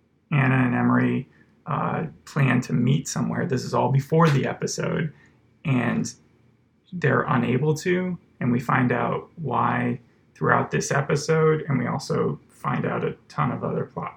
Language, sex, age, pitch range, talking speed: English, male, 20-39, 130-150 Hz, 155 wpm